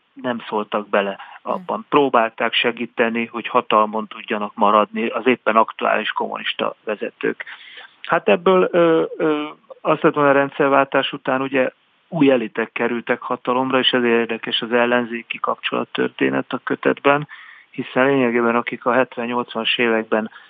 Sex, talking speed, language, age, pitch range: male, 120 wpm, Hungarian, 30-49, 110-135 Hz